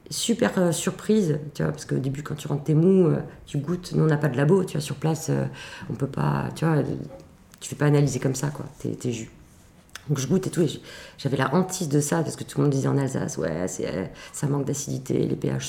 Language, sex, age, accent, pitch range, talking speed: French, female, 40-59, French, 130-155 Hz, 255 wpm